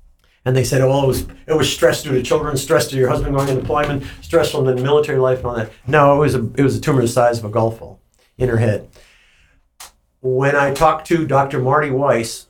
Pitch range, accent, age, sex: 120-140 Hz, American, 60-79, male